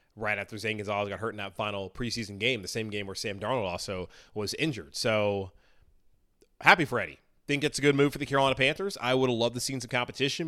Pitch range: 110-135 Hz